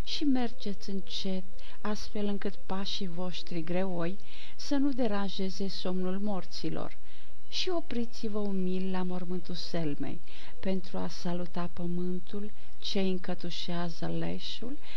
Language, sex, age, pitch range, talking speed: Romanian, female, 50-69, 175-210 Hz, 105 wpm